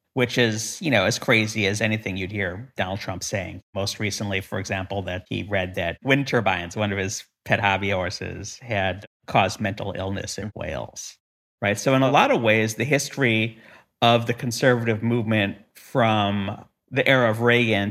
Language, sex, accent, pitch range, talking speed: English, male, American, 100-120 Hz, 180 wpm